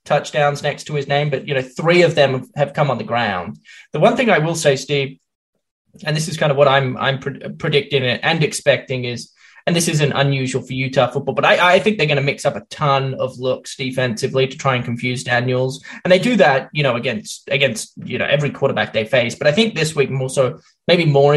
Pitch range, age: 130-170 Hz, 20-39